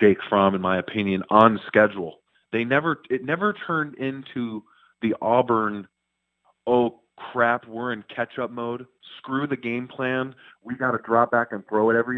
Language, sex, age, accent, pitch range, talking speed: English, male, 30-49, American, 115-155 Hz, 170 wpm